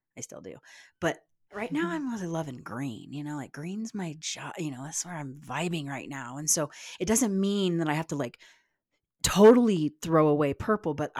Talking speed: 210 wpm